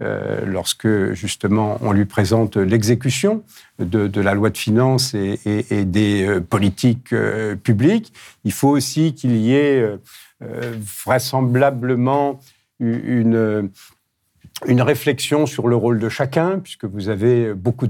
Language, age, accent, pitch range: French, 50-69, French, 100-130 Hz